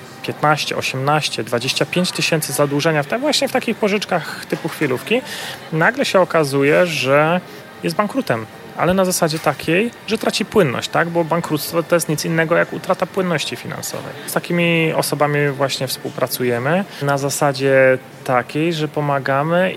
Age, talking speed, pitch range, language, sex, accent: 30-49, 135 wpm, 130-165 Hz, Polish, male, native